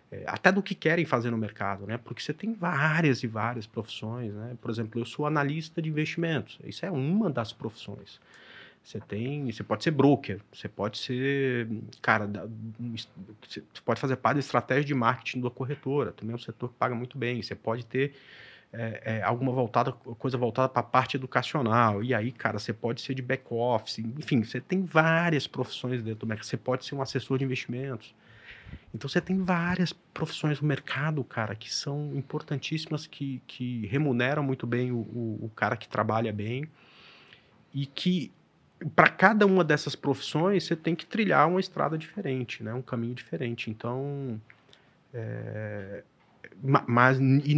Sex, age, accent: male, 30-49, Brazilian